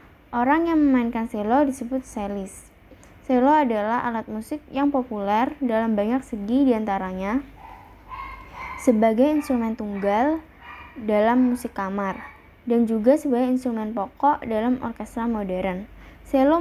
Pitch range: 210-260 Hz